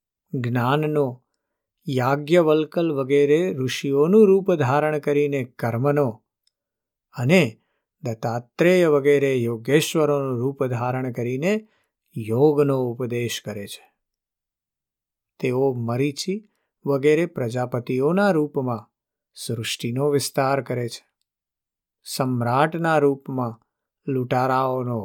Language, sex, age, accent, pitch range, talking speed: Gujarati, male, 50-69, native, 120-150 Hz, 75 wpm